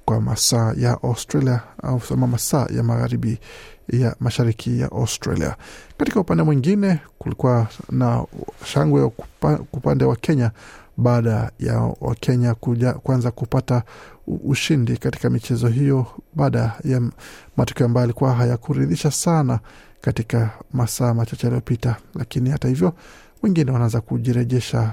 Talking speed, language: 120 wpm, Swahili